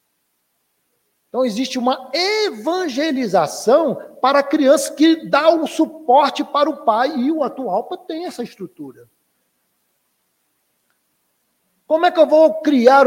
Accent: Brazilian